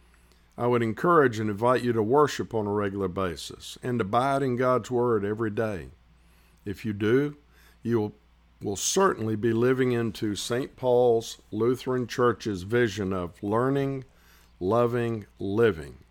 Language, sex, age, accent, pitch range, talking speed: English, male, 50-69, American, 85-125 Hz, 140 wpm